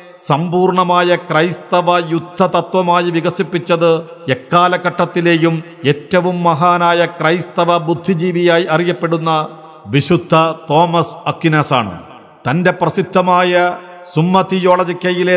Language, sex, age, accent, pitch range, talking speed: Malayalam, male, 50-69, native, 160-180 Hz, 70 wpm